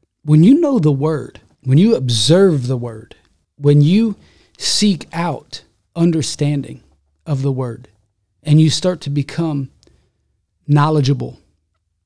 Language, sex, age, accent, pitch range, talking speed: English, male, 30-49, American, 120-180 Hz, 120 wpm